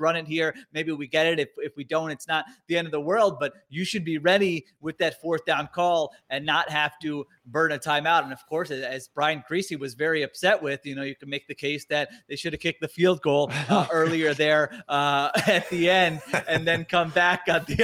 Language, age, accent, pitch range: English, 30-49, American, 140-170 Hz